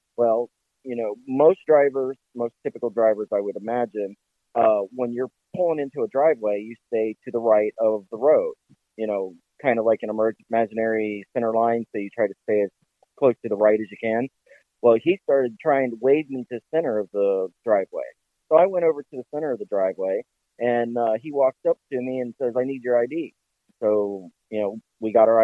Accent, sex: American, male